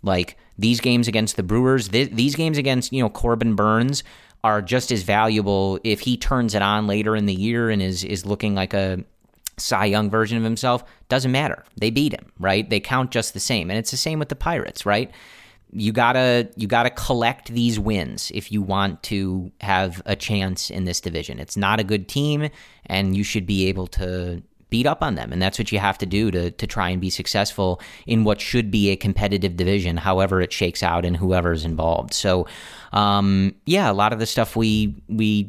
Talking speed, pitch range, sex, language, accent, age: 220 wpm, 95-115 Hz, male, English, American, 30-49